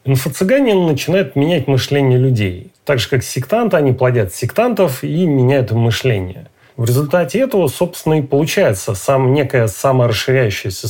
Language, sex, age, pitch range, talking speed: Russian, male, 30-49, 115-155 Hz, 130 wpm